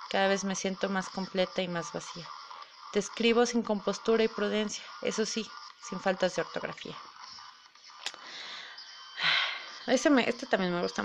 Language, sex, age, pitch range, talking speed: Spanish, female, 30-49, 175-215 Hz, 145 wpm